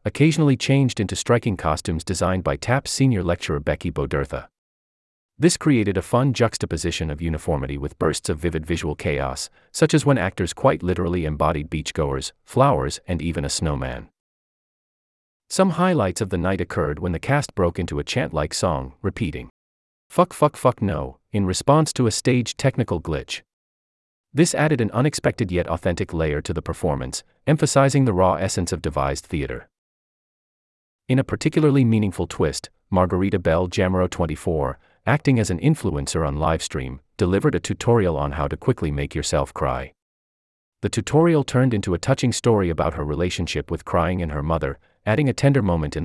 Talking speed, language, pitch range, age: 165 wpm, English, 80-120 Hz, 30-49